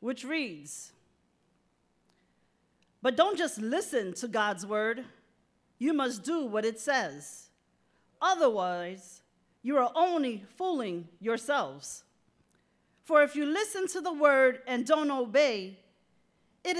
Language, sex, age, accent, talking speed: English, female, 40-59, American, 115 wpm